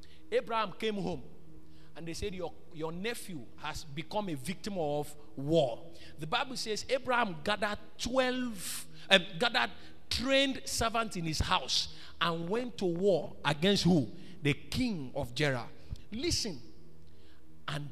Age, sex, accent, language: 50-69, male, Nigerian, English